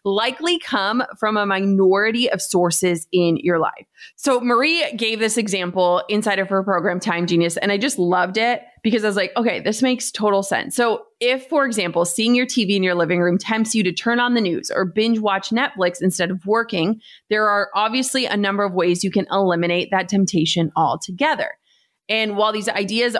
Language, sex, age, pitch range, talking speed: English, female, 30-49, 185-240 Hz, 200 wpm